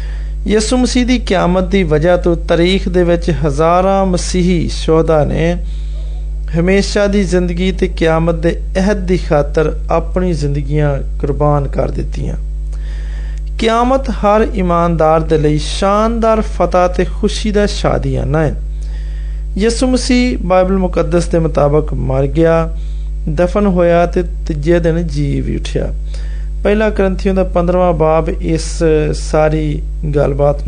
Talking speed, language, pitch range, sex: 105 wpm, Hindi, 135-185 Hz, male